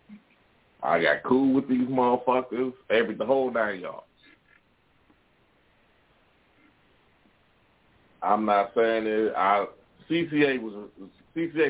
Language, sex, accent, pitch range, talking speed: English, male, American, 105-145 Hz, 95 wpm